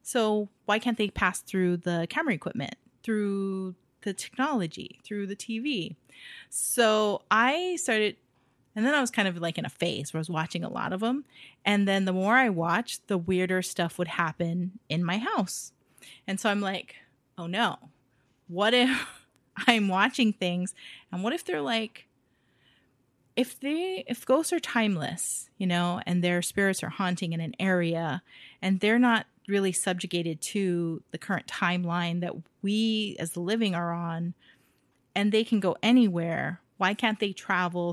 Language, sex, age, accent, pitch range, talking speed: English, female, 30-49, American, 170-210 Hz, 170 wpm